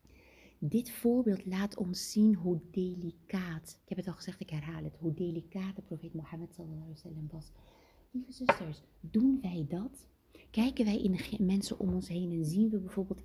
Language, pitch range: Dutch, 160-200 Hz